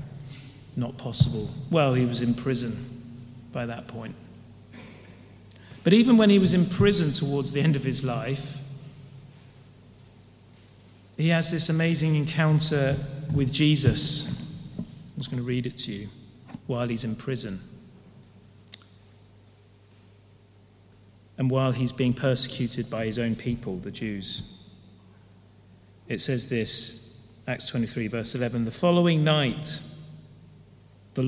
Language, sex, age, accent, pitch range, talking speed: English, male, 40-59, British, 105-135 Hz, 125 wpm